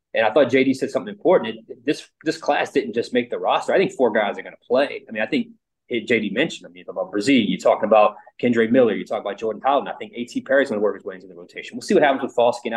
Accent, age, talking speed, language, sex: American, 20-39, 310 wpm, English, male